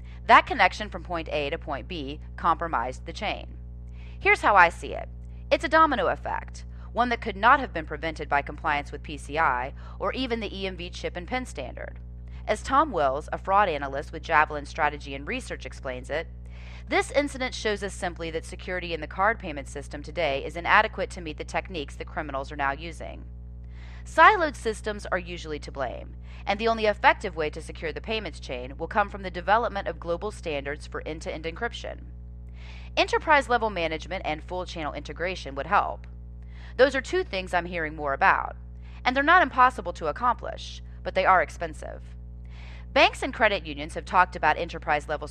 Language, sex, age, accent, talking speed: English, female, 30-49, American, 180 wpm